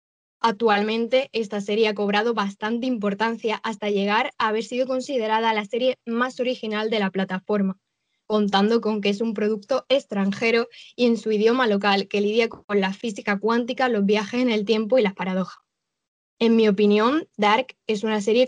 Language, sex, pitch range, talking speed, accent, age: Spanish, female, 205-230 Hz, 170 wpm, Spanish, 10-29